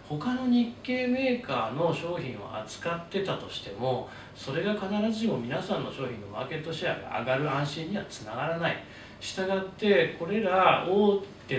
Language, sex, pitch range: Japanese, male, 125-180 Hz